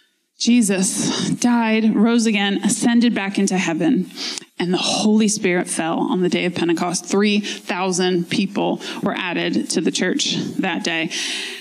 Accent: American